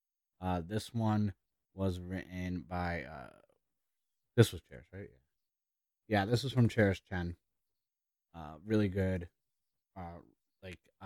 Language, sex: English, male